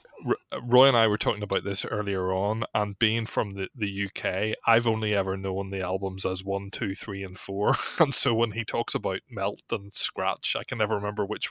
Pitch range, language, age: 95-115 Hz, English, 20-39